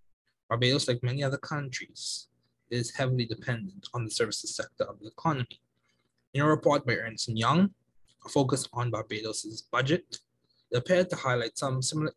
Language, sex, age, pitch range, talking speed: English, male, 20-39, 115-140 Hz, 160 wpm